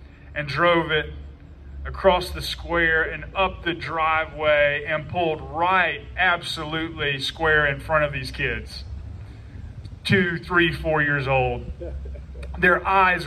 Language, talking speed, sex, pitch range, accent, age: English, 120 wpm, male, 145-205 Hz, American, 30-49